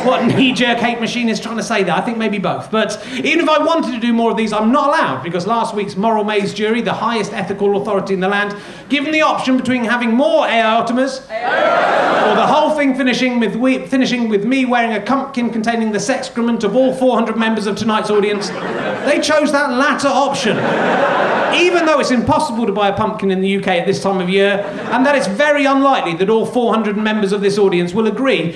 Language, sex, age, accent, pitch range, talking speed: English, male, 40-59, British, 205-270 Hz, 220 wpm